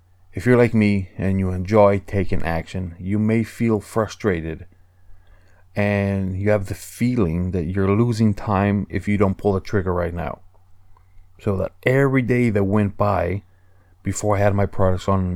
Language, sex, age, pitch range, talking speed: English, male, 30-49, 95-115 Hz, 170 wpm